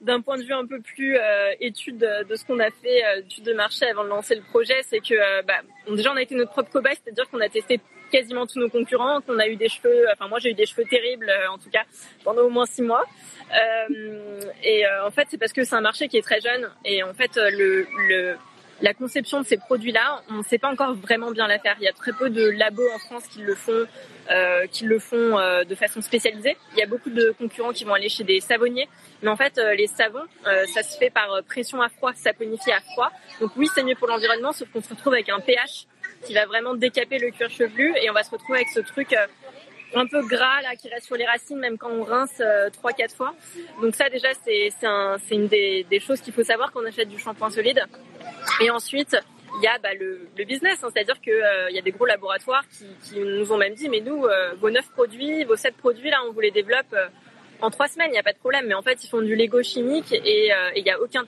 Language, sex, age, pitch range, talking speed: French, female, 20-39, 210-265 Hz, 270 wpm